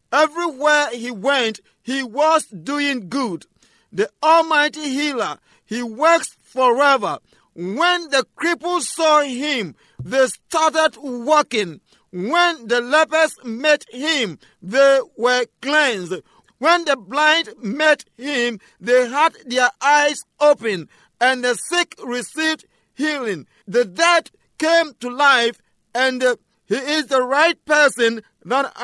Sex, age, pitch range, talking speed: male, 50-69, 240-310 Hz, 115 wpm